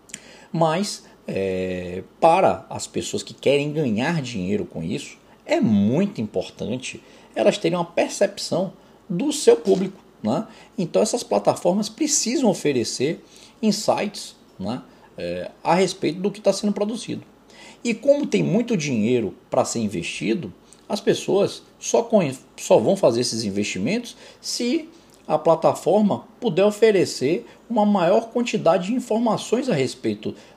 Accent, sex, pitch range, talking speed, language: Brazilian, male, 160-220 Hz, 125 wpm, Portuguese